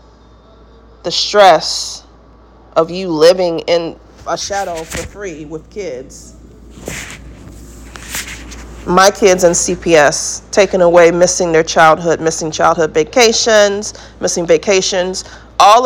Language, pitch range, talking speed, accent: English, 155-195 Hz, 100 wpm, American